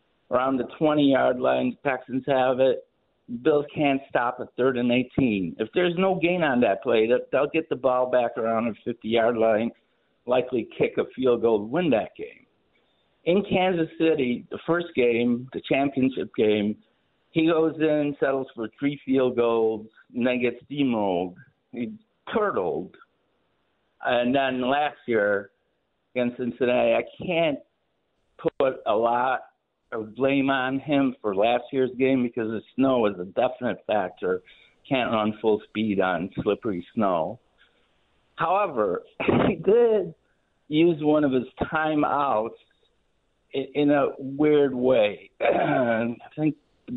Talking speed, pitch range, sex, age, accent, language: 140 wpm, 120-150 Hz, male, 60-79, American, English